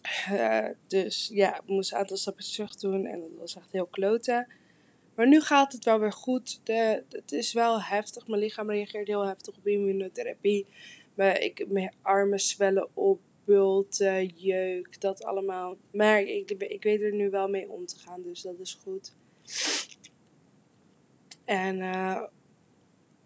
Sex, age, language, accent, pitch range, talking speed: female, 20-39, Dutch, Dutch, 190-215 Hz, 155 wpm